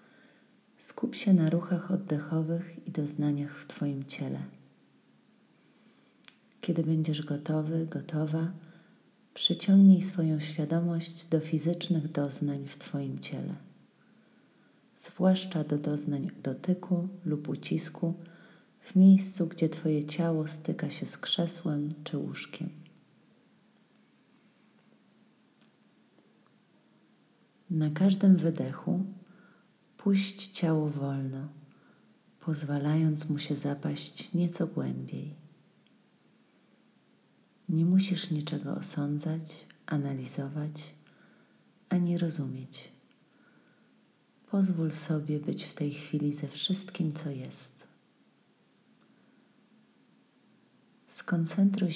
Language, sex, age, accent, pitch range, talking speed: Polish, female, 40-59, native, 150-190 Hz, 80 wpm